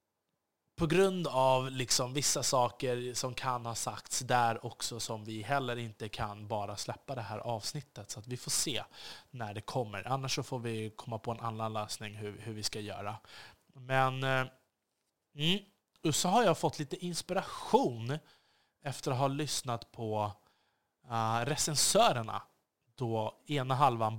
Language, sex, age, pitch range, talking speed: Swedish, male, 20-39, 110-135 Hz, 150 wpm